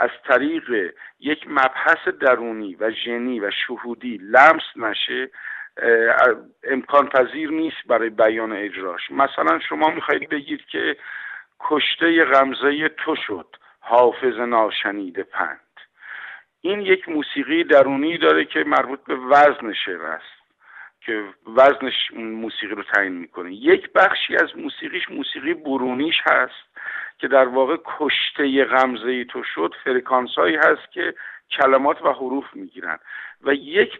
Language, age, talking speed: Persian, 50-69, 125 wpm